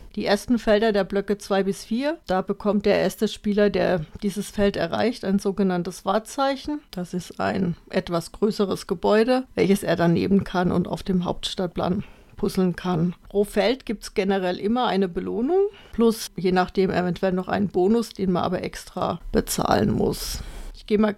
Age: 50-69